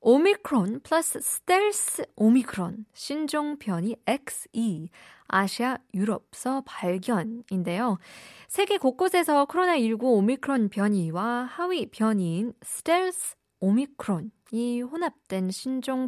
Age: 20-39